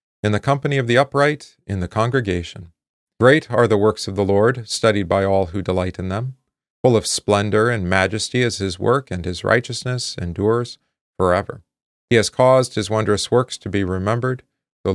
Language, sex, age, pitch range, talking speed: English, male, 40-59, 95-125 Hz, 185 wpm